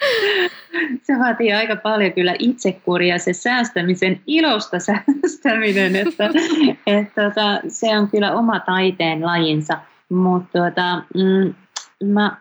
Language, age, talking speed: Finnish, 30-49, 90 wpm